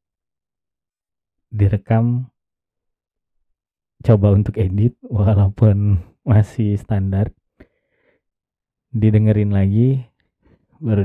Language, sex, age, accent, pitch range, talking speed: Indonesian, male, 20-39, native, 100-115 Hz, 55 wpm